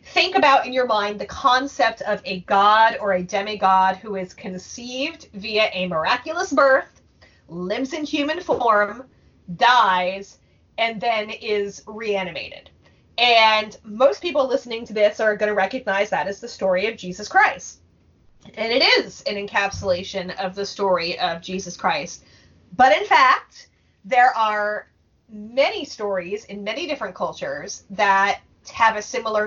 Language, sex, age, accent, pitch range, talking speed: English, female, 30-49, American, 195-245 Hz, 150 wpm